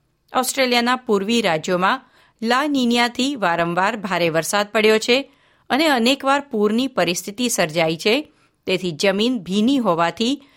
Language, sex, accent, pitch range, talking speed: Gujarati, female, native, 180-240 Hz, 115 wpm